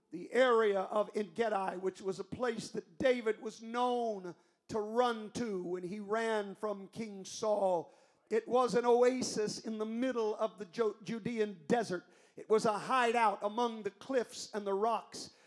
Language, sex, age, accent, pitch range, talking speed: English, male, 50-69, American, 215-255 Hz, 165 wpm